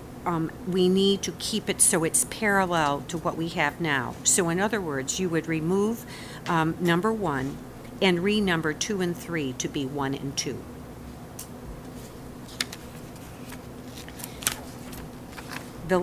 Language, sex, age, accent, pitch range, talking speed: English, female, 50-69, American, 160-210 Hz, 130 wpm